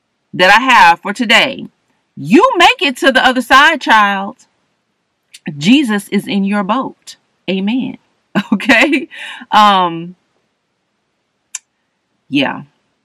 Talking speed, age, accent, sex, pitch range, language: 100 wpm, 40-59, American, female, 160-235 Hz, English